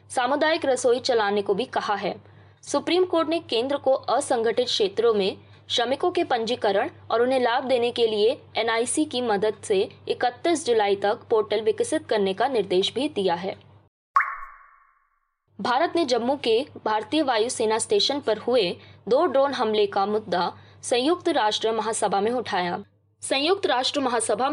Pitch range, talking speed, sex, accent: 215-315 Hz, 150 wpm, female, native